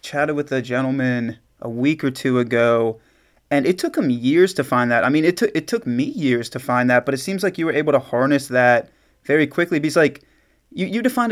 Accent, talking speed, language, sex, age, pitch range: American, 240 wpm, English, male, 30-49, 130-165 Hz